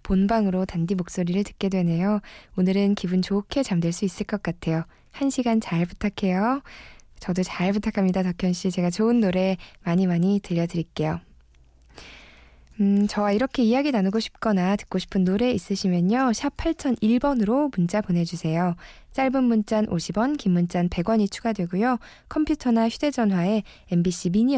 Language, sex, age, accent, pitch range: Korean, female, 20-39, native, 180-230 Hz